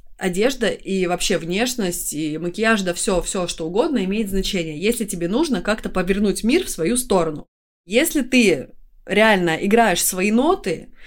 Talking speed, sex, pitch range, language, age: 150 wpm, female, 190-245 Hz, Russian, 20-39